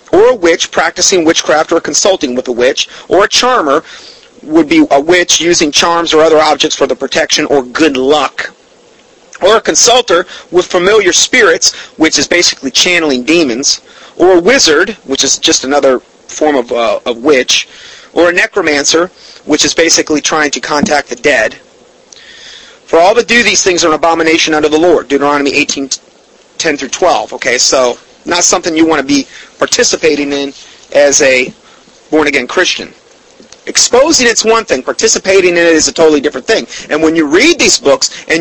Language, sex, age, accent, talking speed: English, male, 30-49, American, 175 wpm